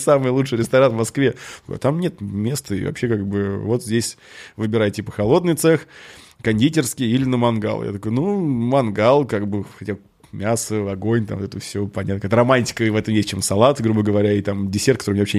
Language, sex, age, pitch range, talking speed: Russian, male, 20-39, 100-120 Hz, 205 wpm